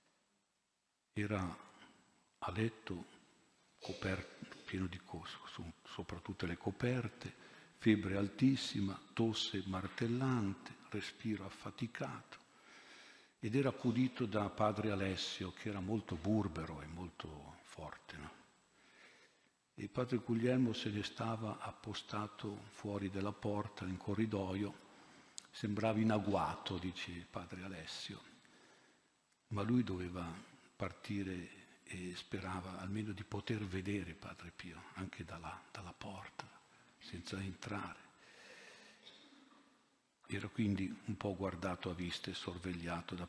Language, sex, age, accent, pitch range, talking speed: Italian, male, 50-69, native, 90-110 Hz, 105 wpm